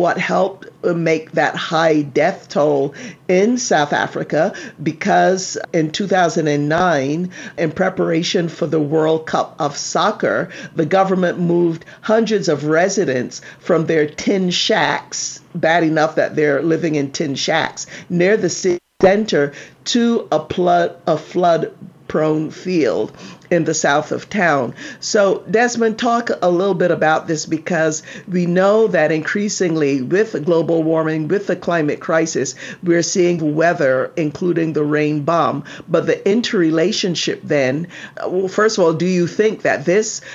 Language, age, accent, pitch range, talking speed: English, 50-69, American, 155-185 Hz, 140 wpm